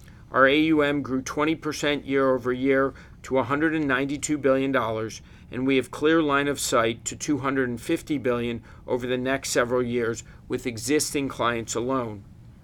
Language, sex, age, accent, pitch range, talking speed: English, male, 50-69, American, 125-150 Hz, 130 wpm